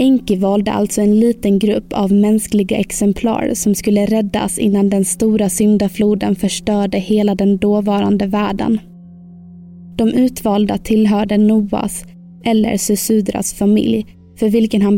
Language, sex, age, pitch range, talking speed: Swedish, female, 20-39, 200-225 Hz, 125 wpm